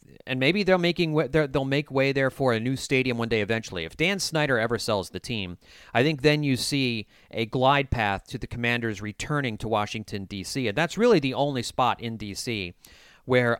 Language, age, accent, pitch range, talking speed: English, 40-59, American, 100-130 Hz, 195 wpm